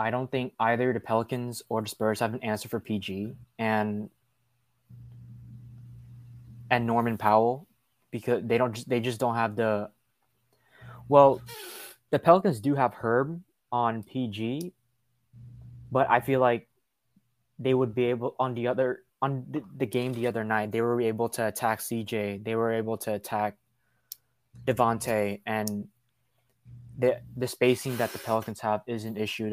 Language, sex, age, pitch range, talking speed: English, male, 20-39, 110-125 Hz, 155 wpm